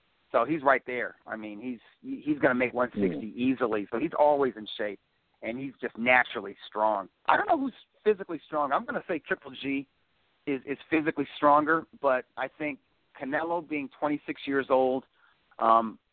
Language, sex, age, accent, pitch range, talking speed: English, male, 40-59, American, 120-145 Hz, 180 wpm